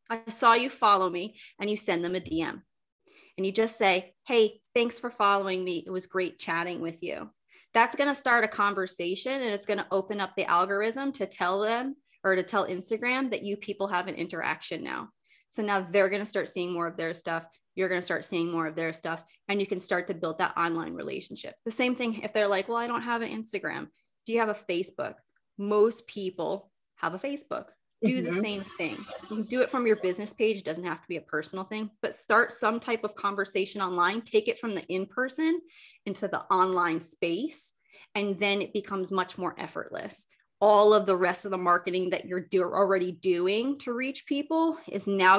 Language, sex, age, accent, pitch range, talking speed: English, female, 30-49, American, 180-225 Hz, 220 wpm